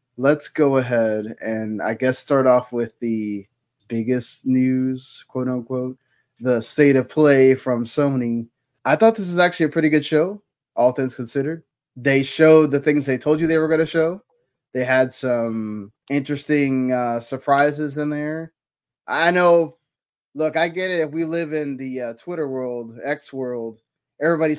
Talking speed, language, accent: 170 wpm, English, American